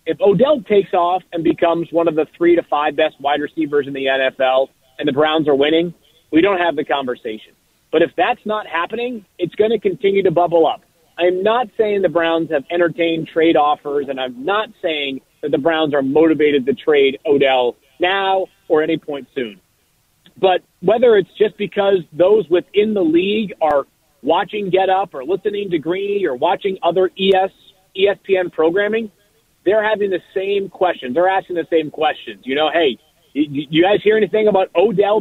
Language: English